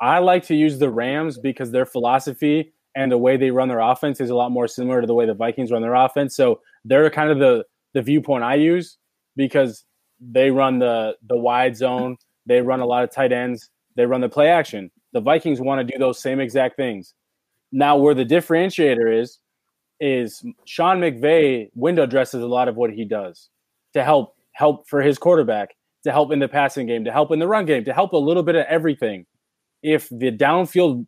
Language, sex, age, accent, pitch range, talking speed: English, male, 20-39, American, 125-150 Hz, 210 wpm